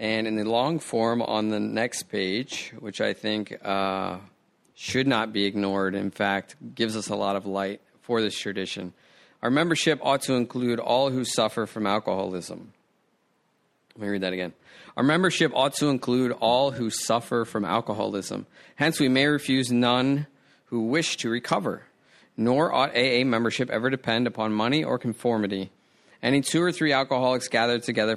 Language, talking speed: English, 170 wpm